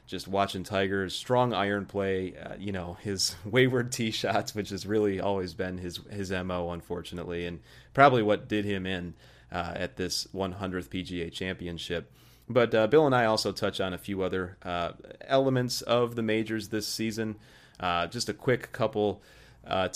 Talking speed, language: 175 wpm, English